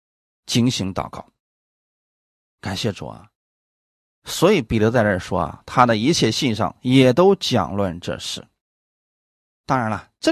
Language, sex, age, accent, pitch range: Chinese, male, 20-39, native, 95-125 Hz